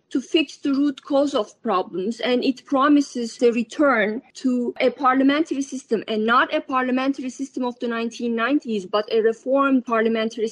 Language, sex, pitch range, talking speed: English, female, 230-275 Hz, 160 wpm